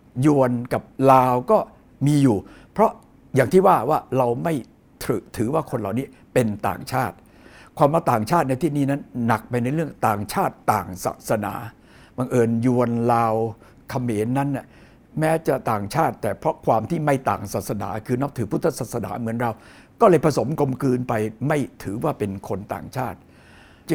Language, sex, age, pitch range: Thai, male, 60-79, 110-135 Hz